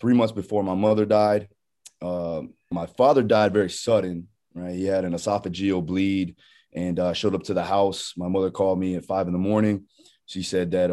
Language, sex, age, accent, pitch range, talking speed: English, male, 20-39, American, 90-105 Hz, 205 wpm